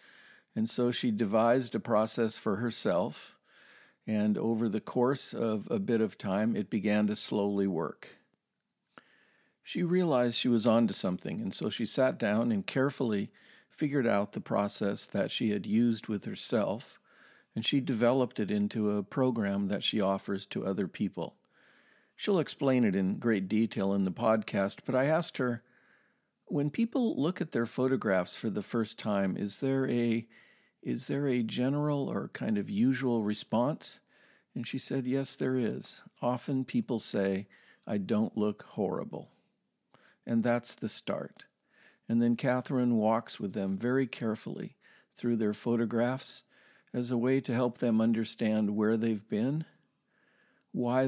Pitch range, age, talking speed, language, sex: 105-130 Hz, 50-69, 155 wpm, English, male